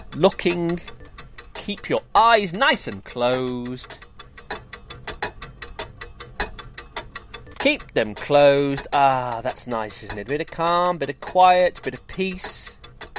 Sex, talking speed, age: male, 115 wpm, 30-49